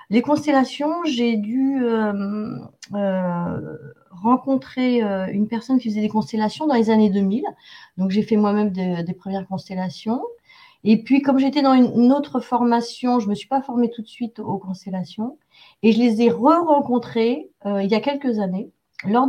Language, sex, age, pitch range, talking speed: French, female, 30-49, 180-235 Hz, 175 wpm